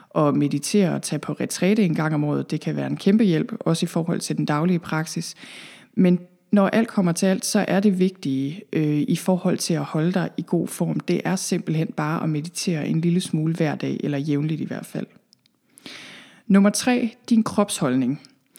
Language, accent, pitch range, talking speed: Danish, native, 160-210 Hz, 205 wpm